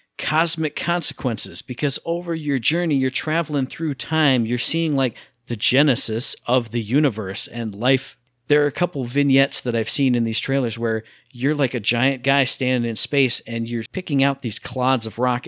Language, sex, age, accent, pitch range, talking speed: English, male, 50-69, American, 120-145 Hz, 185 wpm